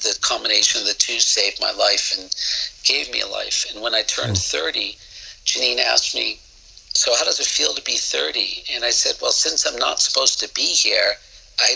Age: 50-69